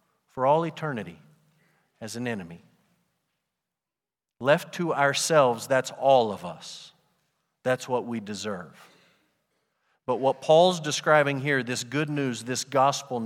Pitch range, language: 120-150 Hz, English